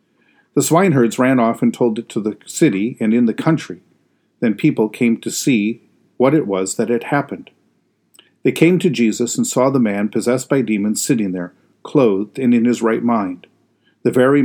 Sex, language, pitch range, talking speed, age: male, English, 110-140 Hz, 190 wpm, 50-69